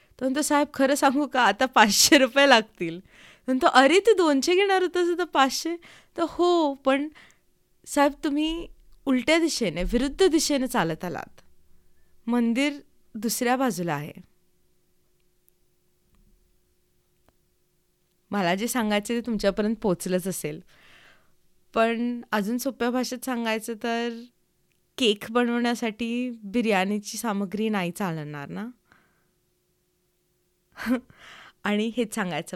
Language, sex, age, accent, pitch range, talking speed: Marathi, female, 20-39, native, 210-260 Hz, 100 wpm